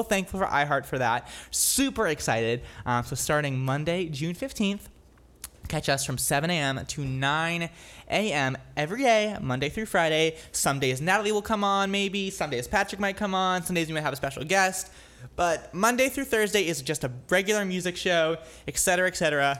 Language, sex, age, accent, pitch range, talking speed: English, male, 20-39, American, 140-195 Hz, 175 wpm